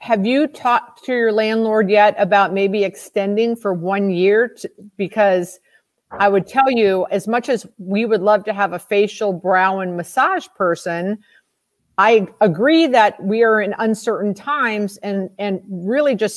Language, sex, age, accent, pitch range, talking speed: English, female, 50-69, American, 190-235 Hz, 165 wpm